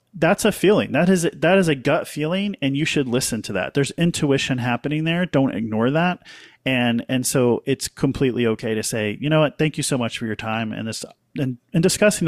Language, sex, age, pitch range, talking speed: English, male, 40-59, 120-150 Hz, 225 wpm